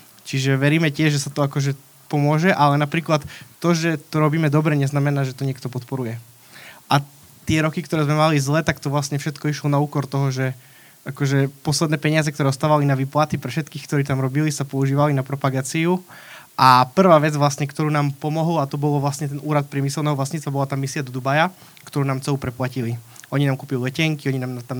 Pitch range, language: 135-155 Hz, Slovak